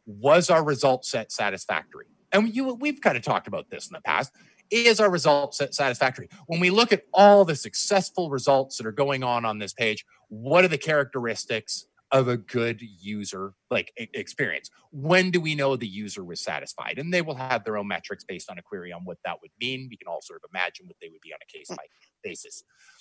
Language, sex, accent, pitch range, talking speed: English, male, American, 140-200 Hz, 220 wpm